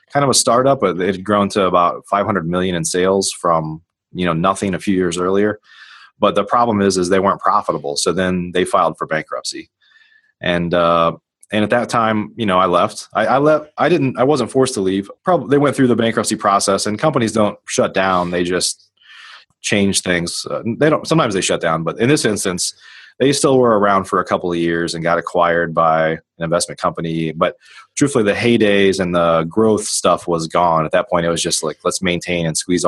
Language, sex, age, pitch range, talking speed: English, male, 30-49, 85-110 Hz, 215 wpm